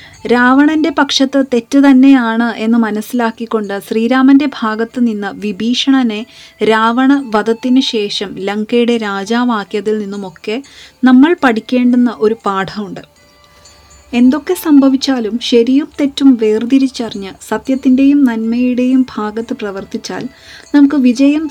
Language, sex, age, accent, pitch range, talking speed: Malayalam, female, 20-39, native, 215-270 Hz, 85 wpm